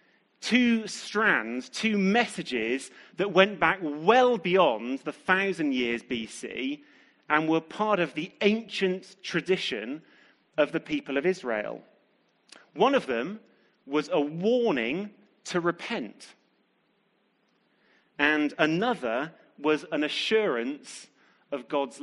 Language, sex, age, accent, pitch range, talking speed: English, male, 30-49, British, 150-225 Hz, 110 wpm